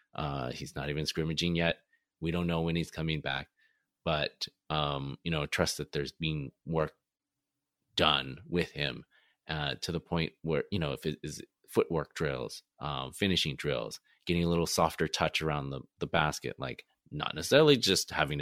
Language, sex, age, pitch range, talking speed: English, male, 30-49, 75-95 Hz, 175 wpm